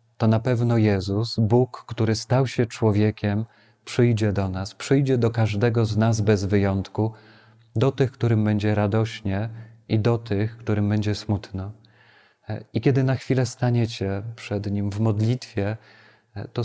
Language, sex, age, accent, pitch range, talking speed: Polish, male, 40-59, native, 100-115 Hz, 145 wpm